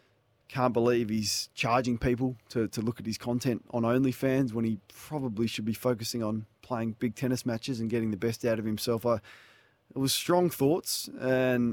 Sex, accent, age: male, Australian, 20-39